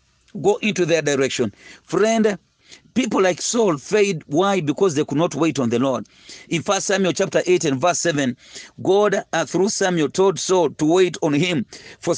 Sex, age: male, 40-59